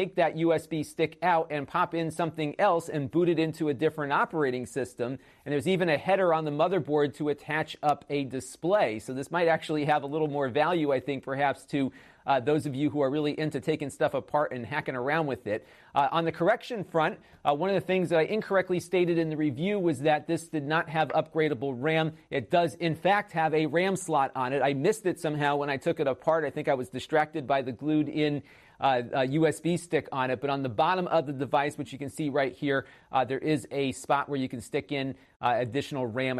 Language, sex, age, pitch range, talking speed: English, male, 40-59, 140-165 Hz, 235 wpm